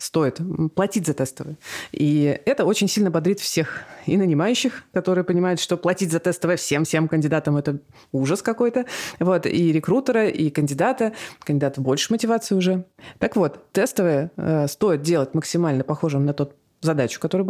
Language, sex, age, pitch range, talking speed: Russian, female, 20-39, 150-185 Hz, 155 wpm